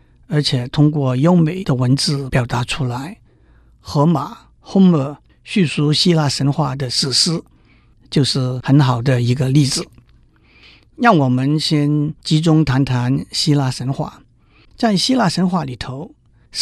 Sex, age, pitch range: male, 50-69, 130-165 Hz